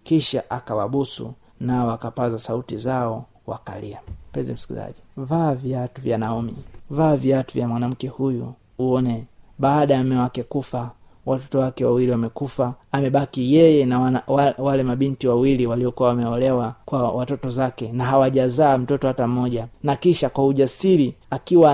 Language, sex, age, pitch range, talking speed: Swahili, male, 30-49, 125-150 Hz, 140 wpm